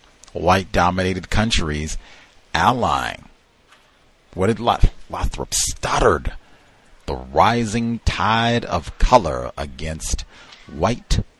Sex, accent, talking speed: male, American, 80 wpm